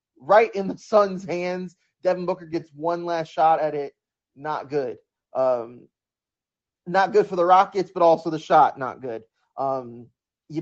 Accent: American